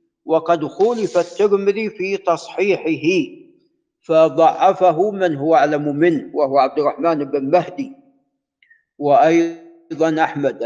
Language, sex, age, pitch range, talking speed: Arabic, male, 50-69, 160-220 Hz, 95 wpm